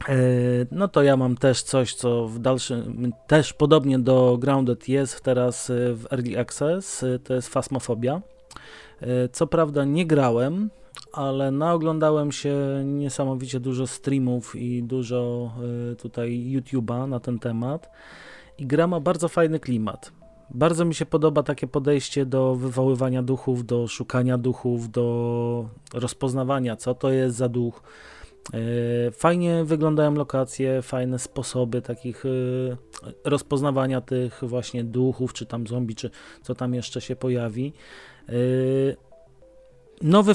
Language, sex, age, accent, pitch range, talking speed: Polish, male, 30-49, native, 125-145 Hz, 125 wpm